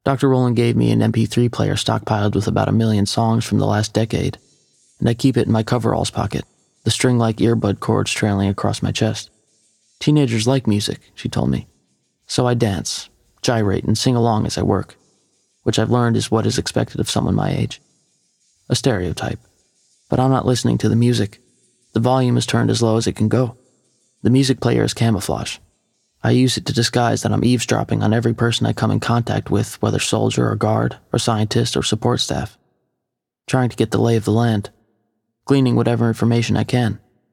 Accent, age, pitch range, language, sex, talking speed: American, 30-49, 110-120 Hz, English, male, 195 wpm